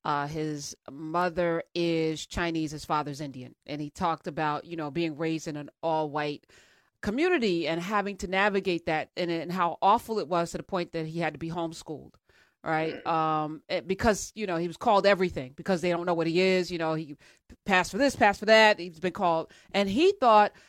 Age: 30-49